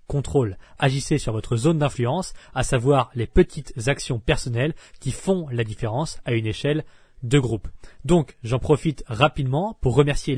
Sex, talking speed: male, 155 wpm